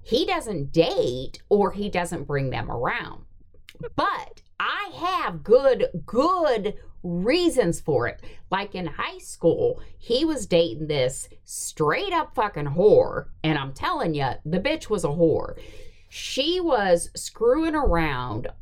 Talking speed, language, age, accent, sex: 135 wpm, English, 50-69, American, female